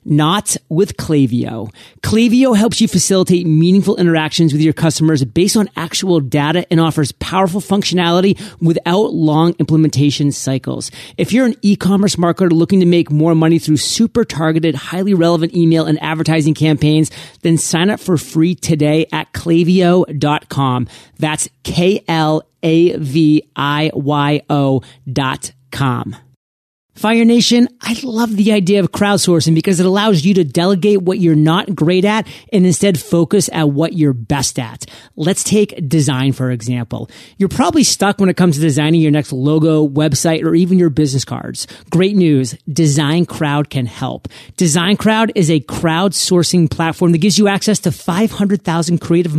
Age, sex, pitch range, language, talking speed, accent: 40-59, male, 150-185 Hz, English, 150 wpm, American